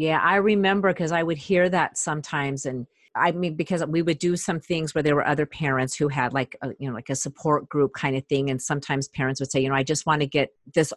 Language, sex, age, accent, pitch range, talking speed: English, female, 40-59, American, 150-190 Hz, 270 wpm